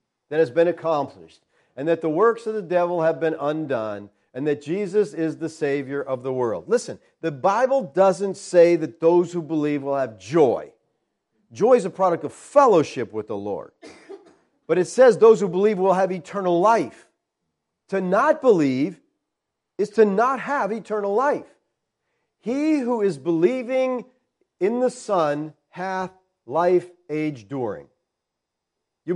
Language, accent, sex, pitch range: English, American, male, 175-240 Hz